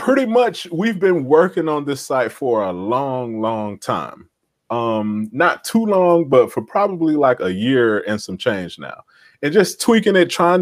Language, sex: English, male